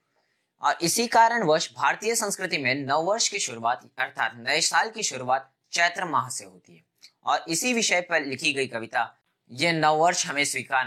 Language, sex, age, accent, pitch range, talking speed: Hindi, male, 20-39, native, 125-165 Hz, 180 wpm